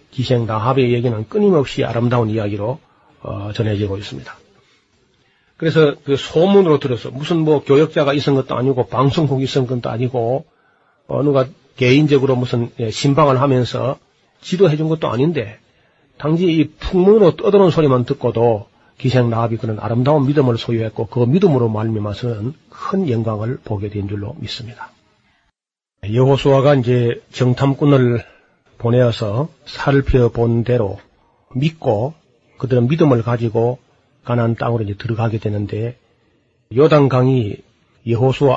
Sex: male